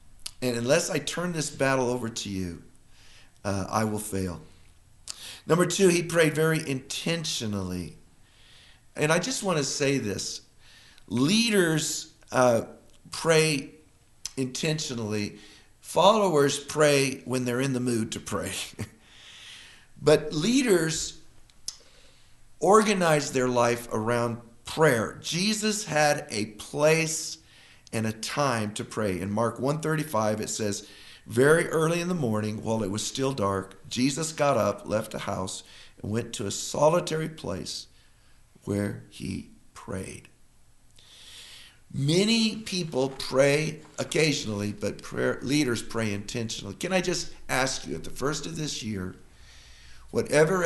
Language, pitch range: English, 105-155 Hz